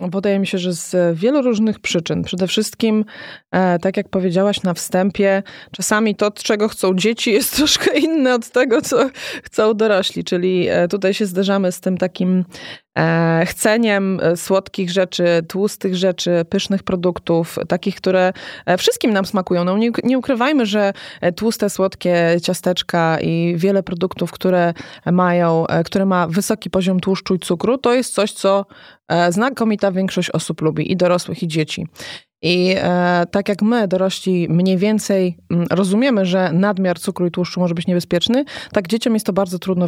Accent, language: native, Polish